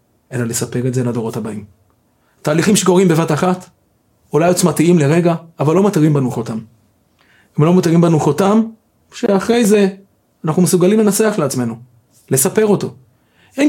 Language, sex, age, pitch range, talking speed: Hebrew, male, 30-49, 140-210 Hz, 140 wpm